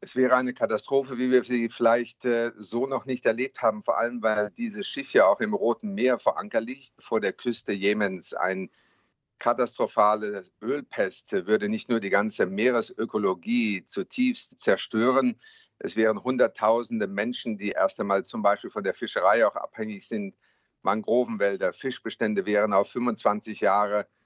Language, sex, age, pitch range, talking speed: German, male, 50-69, 105-130 Hz, 155 wpm